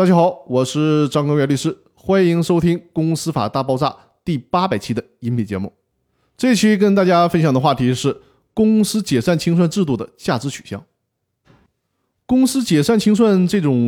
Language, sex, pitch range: Chinese, male, 125-185 Hz